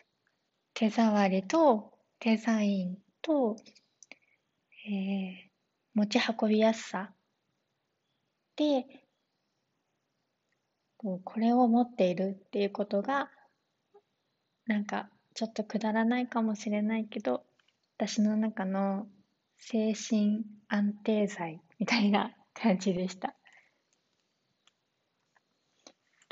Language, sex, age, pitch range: Japanese, female, 20-39, 200-245 Hz